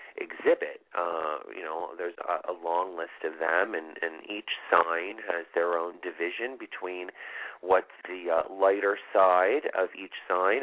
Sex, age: male, 40-59